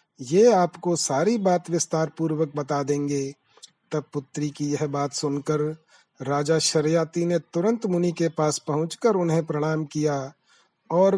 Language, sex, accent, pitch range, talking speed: Hindi, male, native, 145-175 Hz, 140 wpm